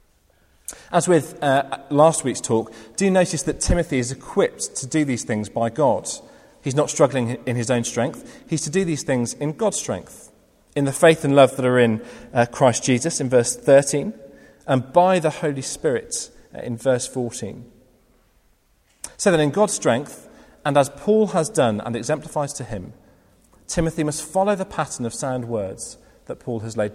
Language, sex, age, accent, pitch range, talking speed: English, male, 40-59, British, 120-165 Hz, 185 wpm